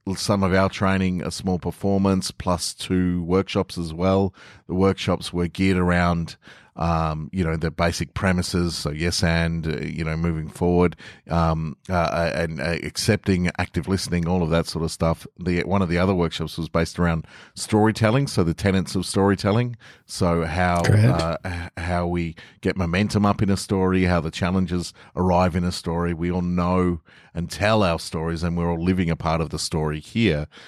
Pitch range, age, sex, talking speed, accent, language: 85-95 Hz, 30-49, male, 180 wpm, Australian, English